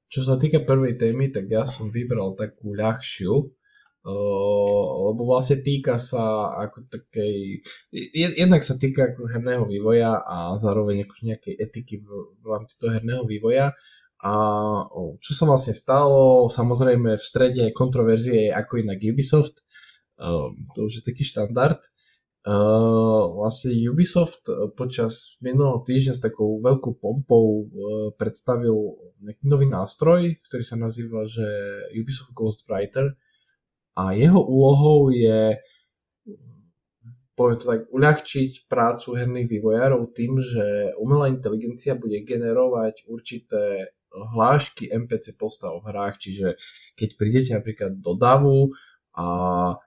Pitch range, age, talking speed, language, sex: 110-135 Hz, 20-39, 125 wpm, Slovak, male